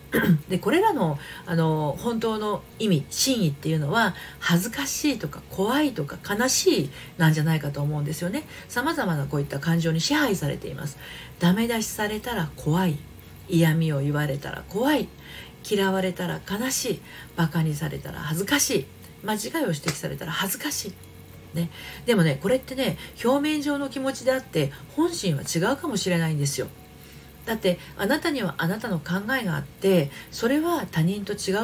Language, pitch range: Japanese, 155-235 Hz